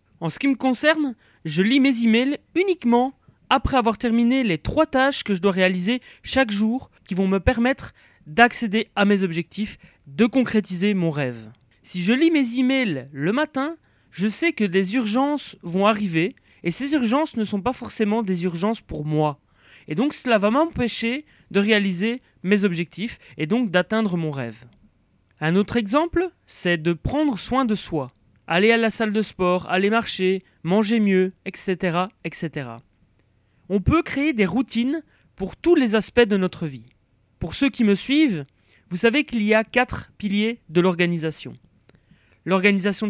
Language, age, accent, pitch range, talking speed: French, 30-49, French, 175-245 Hz, 170 wpm